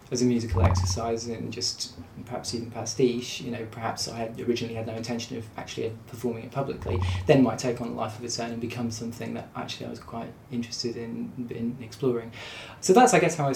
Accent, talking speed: British, 220 wpm